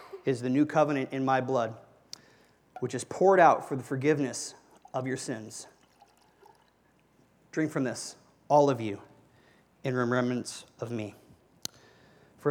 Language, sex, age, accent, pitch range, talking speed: English, male, 30-49, American, 125-160 Hz, 135 wpm